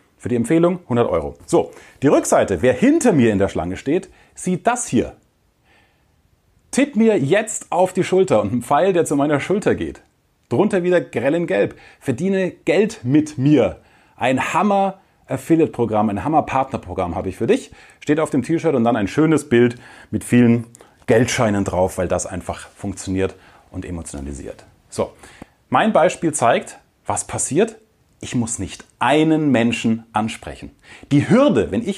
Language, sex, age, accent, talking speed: German, male, 30-49, German, 160 wpm